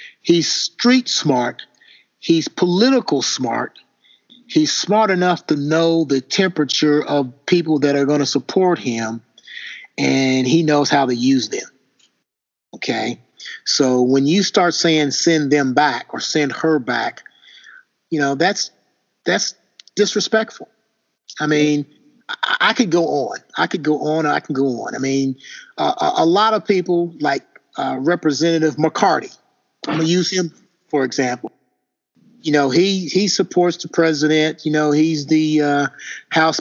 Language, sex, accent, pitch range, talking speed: English, male, American, 145-175 Hz, 150 wpm